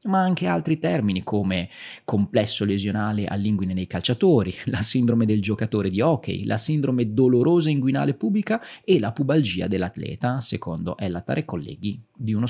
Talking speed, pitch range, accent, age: 150 wpm, 105-155 Hz, native, 30-49